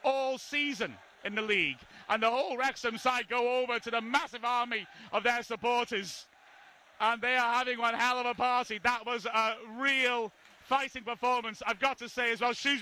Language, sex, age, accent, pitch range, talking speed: English, male, 30-49, British, 225-255 Hz, 190 wpm